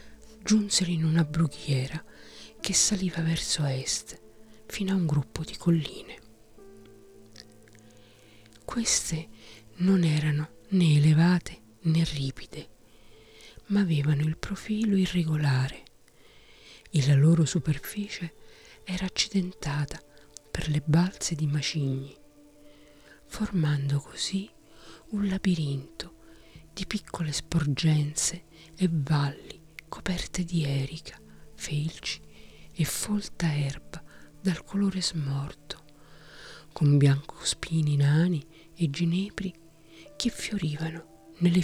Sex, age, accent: female, 40-59, native